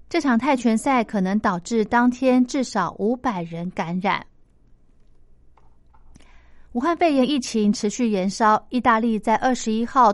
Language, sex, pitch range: Chinese, female, 195-250 Hz